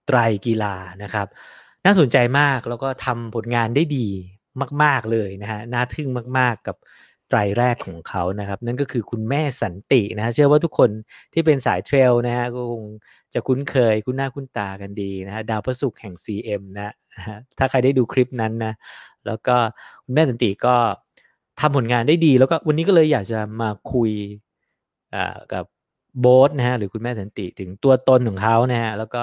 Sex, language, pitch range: male, English, 110-135 Hz